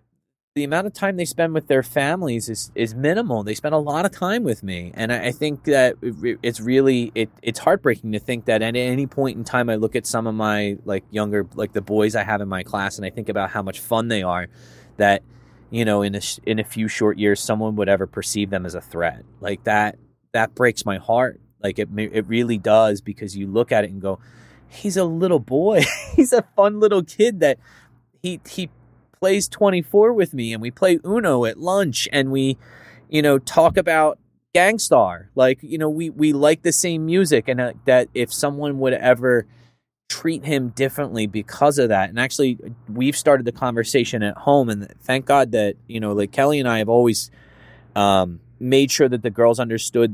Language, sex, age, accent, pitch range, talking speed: English, male, 20-39, American, 105-140 Hz, 215 wpm